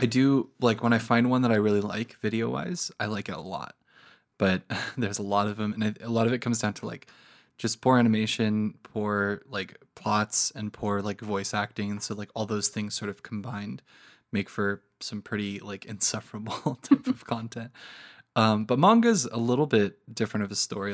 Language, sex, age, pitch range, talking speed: English, male, 20-39, 105-120 Hz, 210 wpm